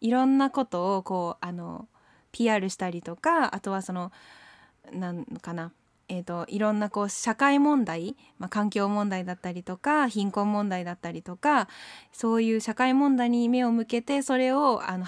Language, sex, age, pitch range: German, female, 20-39, 185-260 Hz